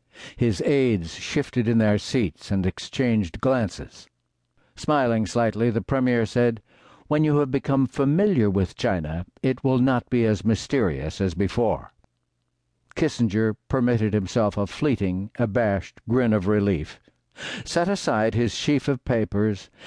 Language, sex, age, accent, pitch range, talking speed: English, male, 60-79, American, 105-140 Hz, 135 wpm